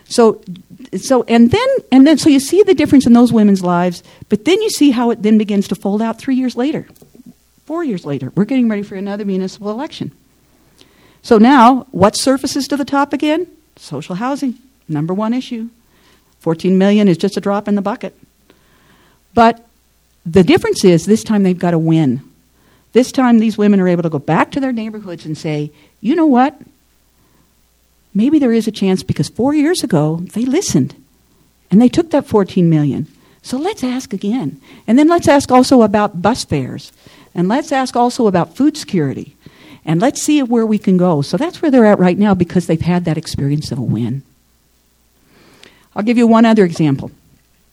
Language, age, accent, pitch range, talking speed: English, 50-69, American, 165-255 Hz, 190 wpm